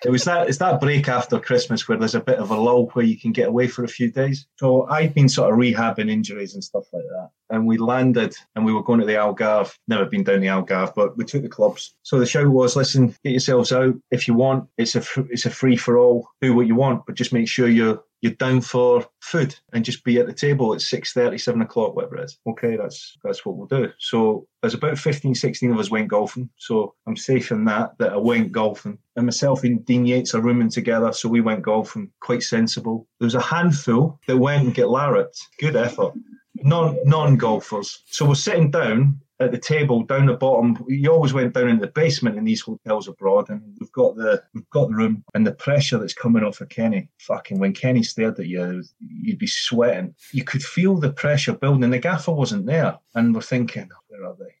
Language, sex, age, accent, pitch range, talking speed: English, male, 30-49, British, 120-165 Hz, 235 wpm